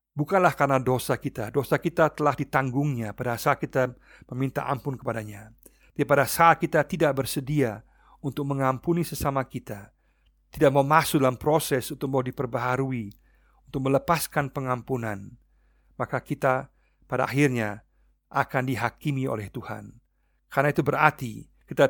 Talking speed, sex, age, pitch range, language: 130 wpm, male, 50-69, 120-145 Hz, Indonesian